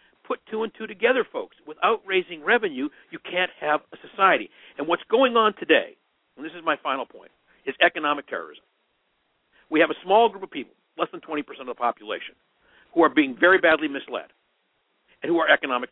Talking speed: 190 wpm